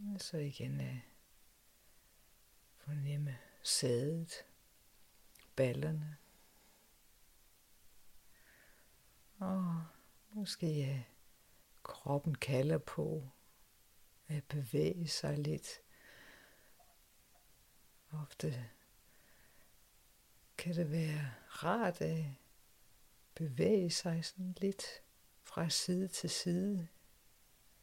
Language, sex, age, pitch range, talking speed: Danish, female, 50-69, 130-165 Hz, 65 wpm